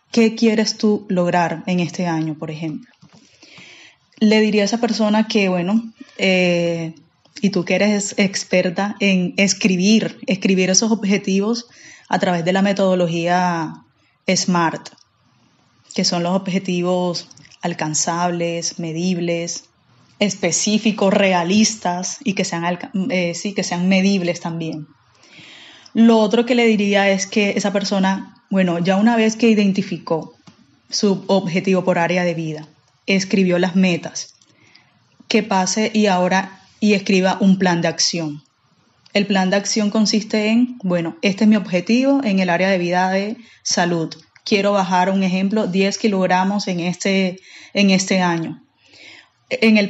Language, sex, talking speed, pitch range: Spanish, female, 135 wpm, 175-210 Hz